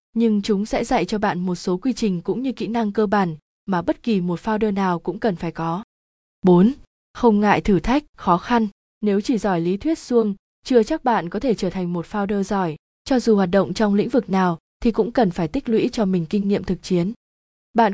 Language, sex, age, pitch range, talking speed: Vietnamese, female, 20-39, 185-230 Hz, 235 wpm